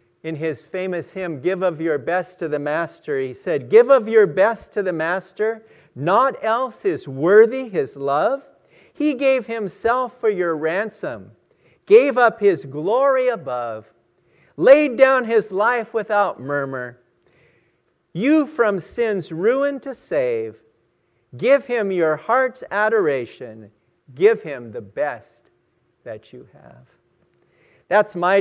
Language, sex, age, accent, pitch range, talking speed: English, male, 50-69, American, 150-225 Hz, 135 wpm